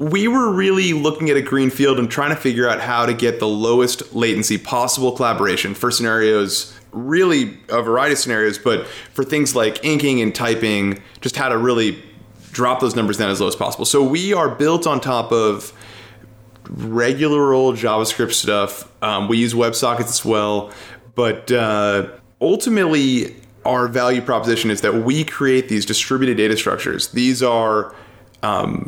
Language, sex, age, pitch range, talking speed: English, male, 30-49, 110-140 Hz, 170 wpm